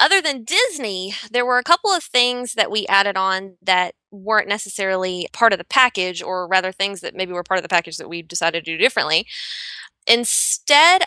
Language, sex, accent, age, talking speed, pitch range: English, female, American, 20-39, 200 wpm, 185-245 Hz